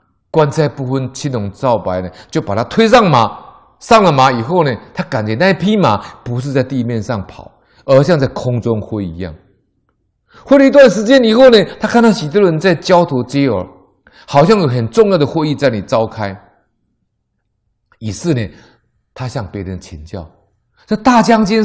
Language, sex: Chinese, male